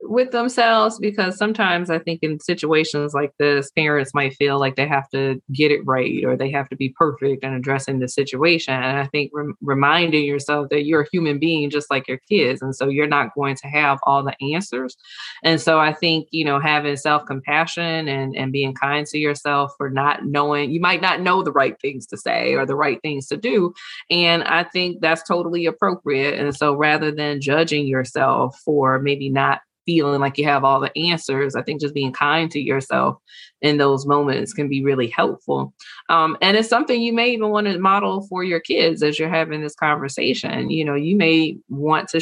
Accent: American